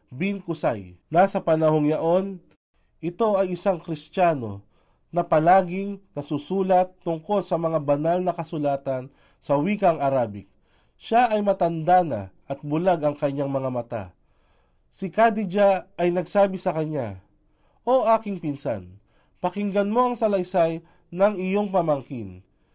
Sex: male